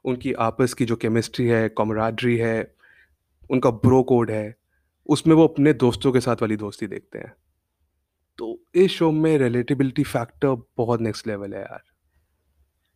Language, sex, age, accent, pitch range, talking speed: Hindi, male, 30-49, native, 100-130 Hz, 155 wpm